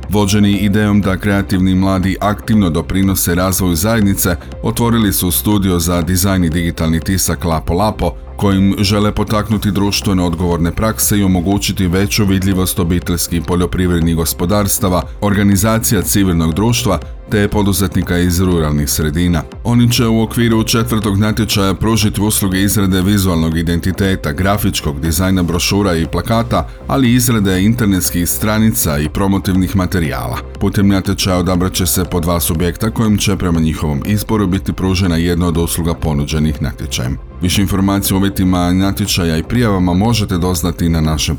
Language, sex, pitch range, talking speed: Croatian, male, 85-105 Hz, 135 wpm